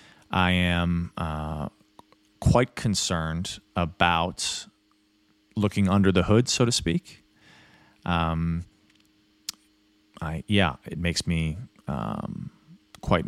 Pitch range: 85-105 Hz